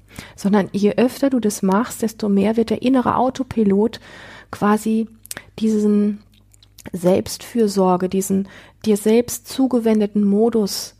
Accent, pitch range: German, 180-215 Hz